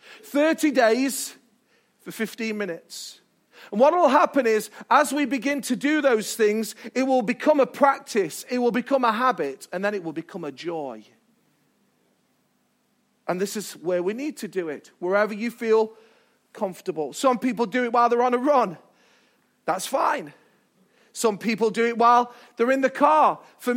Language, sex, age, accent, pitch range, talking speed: English, male, 40-59, British, 200-250 Hz, 170 wpm